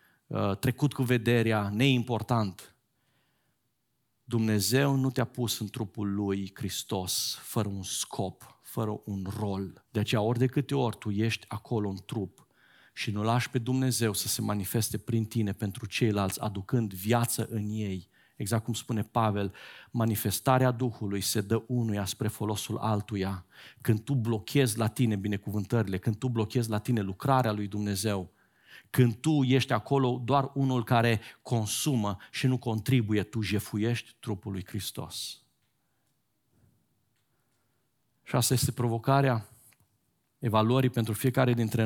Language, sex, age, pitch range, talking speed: Romanian, male, 40-59, 105-125 Hz, 135 wpm